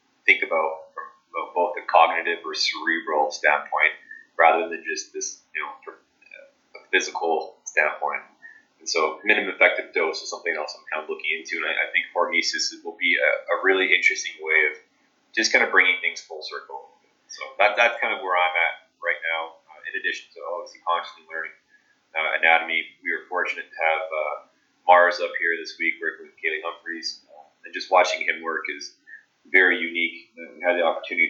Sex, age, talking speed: male, 20-39, 185 wpm